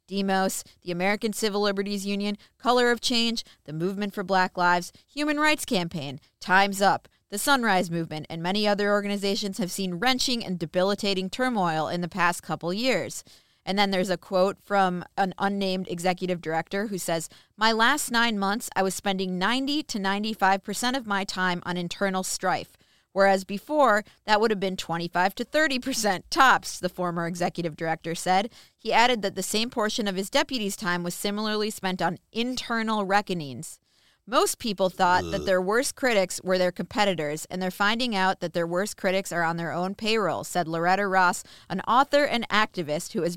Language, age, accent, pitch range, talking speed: English, 30-49, American, 180-215 Hz, 180 wpm